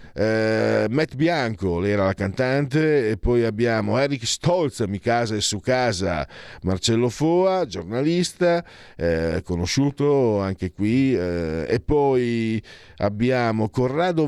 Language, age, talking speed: Italian, 50-69, 120 wpm